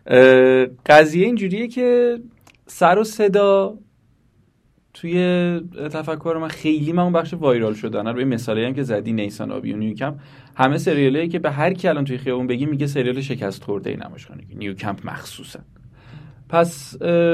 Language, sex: Persian, male